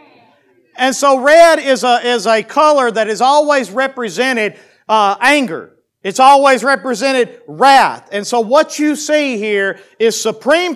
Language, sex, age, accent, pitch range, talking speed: English, male, 40-59, American, 170-255 Hz, 145 wpm